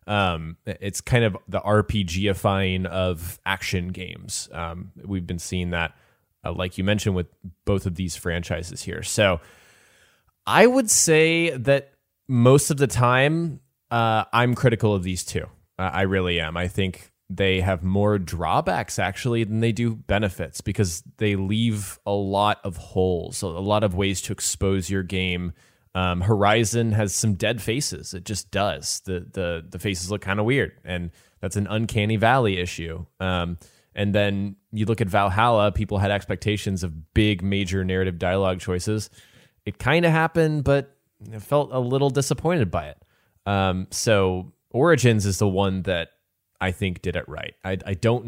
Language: English